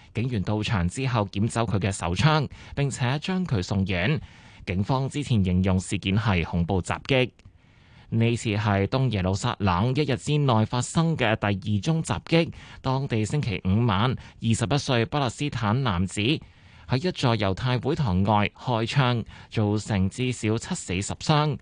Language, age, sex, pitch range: Chinese, 20-39, male, 100-135 Hz